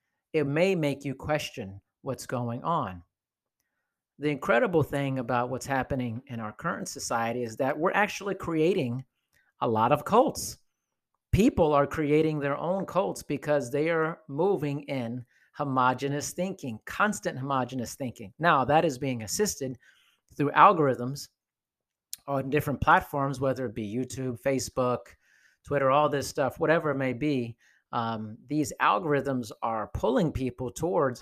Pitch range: 125-150 Hz